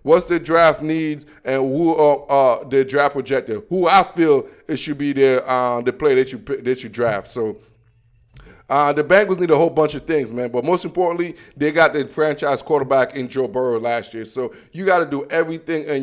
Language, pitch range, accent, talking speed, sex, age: English, 140-175 Hz, American, 215 wpm, male, 20-39